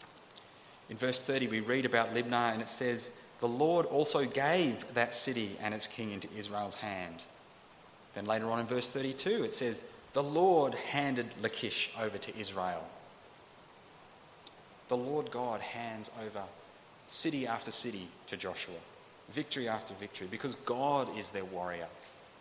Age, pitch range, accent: 30-49, 105-145 Hz, Australian